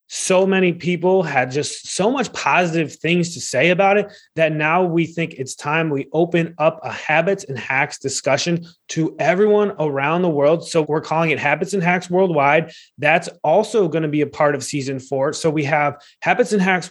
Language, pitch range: English, 145-175 Hz